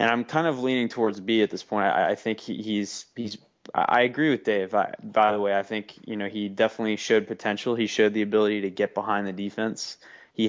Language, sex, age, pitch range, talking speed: English, male, 20-39, 100-110 Hz, 240 wpm